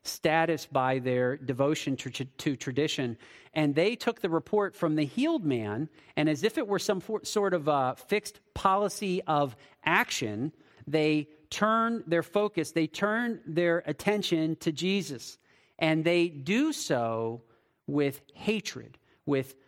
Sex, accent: male, American